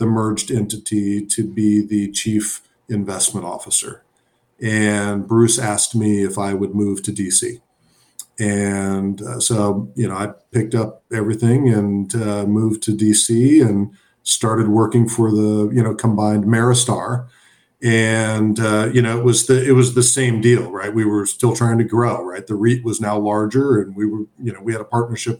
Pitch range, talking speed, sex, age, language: 105-115 Hz, 180 wpm, male, 50-69, English